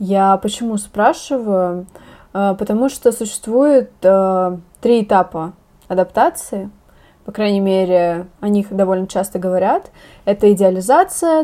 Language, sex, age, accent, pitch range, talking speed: Russian, female, 20-39, native, 190-230 Hz, 100 wpm